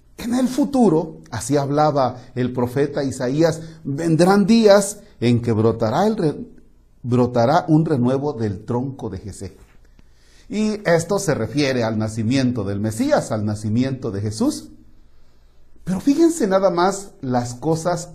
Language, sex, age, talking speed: Spanish, male, 40-59, 130 wpm